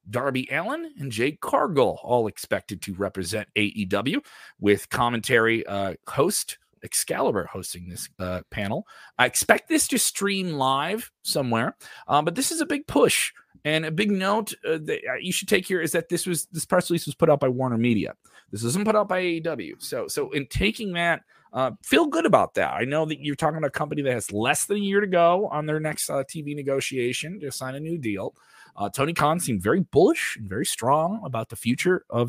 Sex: male